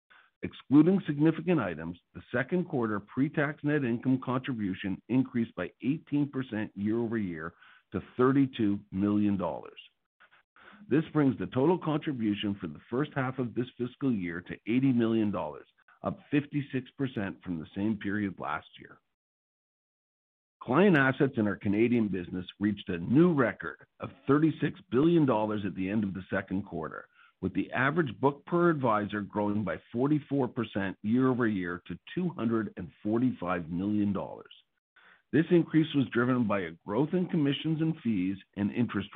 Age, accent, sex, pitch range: 50-69, American, male, 100-140 Hz